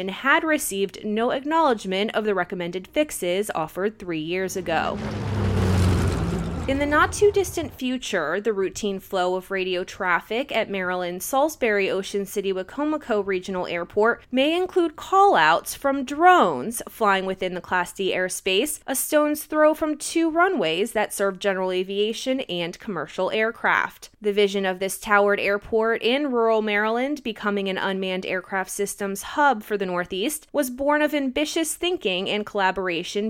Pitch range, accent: 185-260 Hz, American